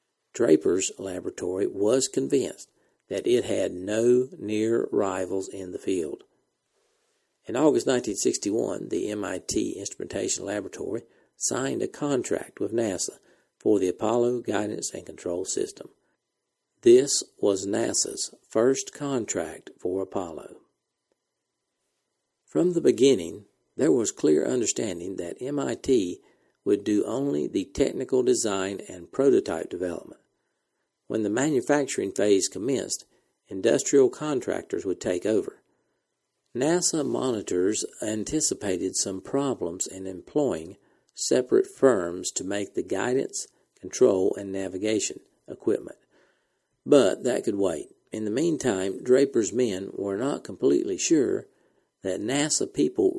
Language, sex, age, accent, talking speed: English, male, 60-79, American, 115 wpm